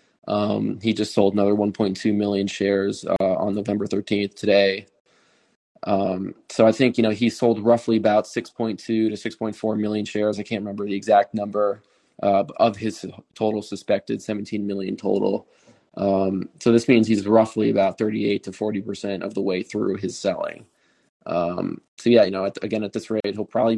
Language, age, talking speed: English, 20-39, 175 wpm